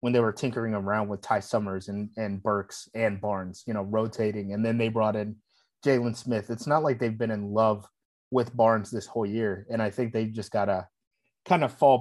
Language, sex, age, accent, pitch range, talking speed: English, male, 20-39, American, 105-120 Hz, 225 wpm